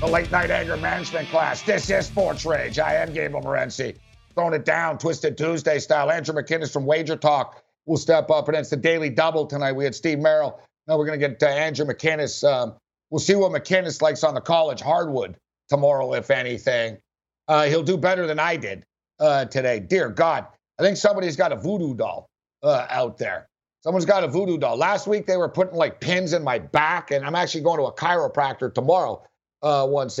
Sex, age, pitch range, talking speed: male, 60-79, 145-175 Hz, 205 wpm